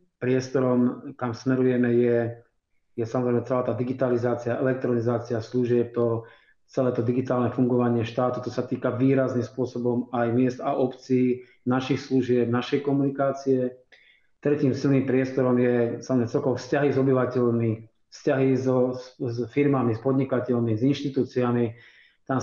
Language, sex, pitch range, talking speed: Slovak, male, 120-135 Hz, 130 wpm